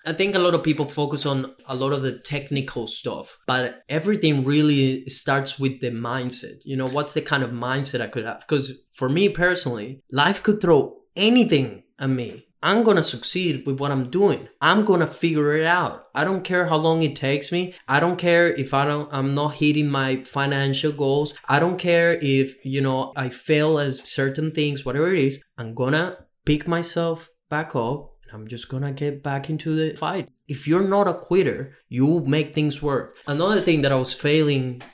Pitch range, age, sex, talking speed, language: 130-160 Hz, 20-39, male, 205 wpm, English